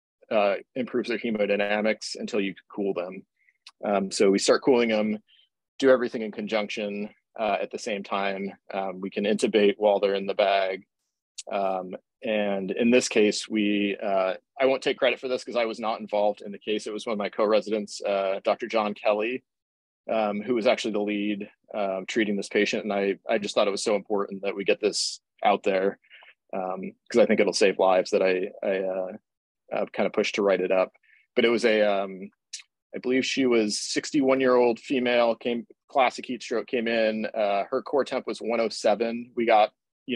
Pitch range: 100-115 Hz